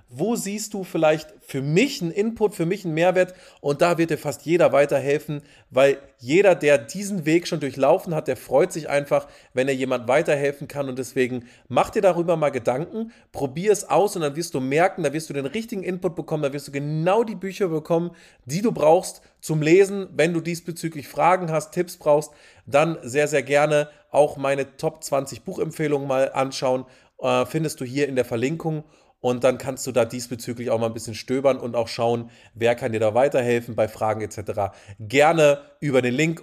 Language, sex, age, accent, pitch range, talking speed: German, male, 30-49, German, 130-165 Hz, 200 wpm